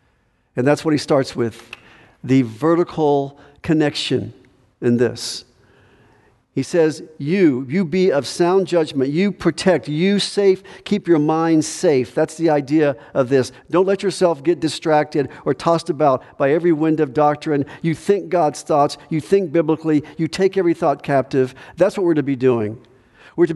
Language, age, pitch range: English, 50-69, 130-165 Hz